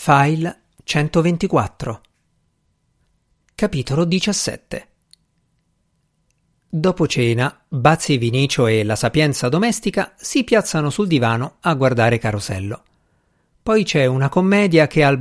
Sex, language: male, Italian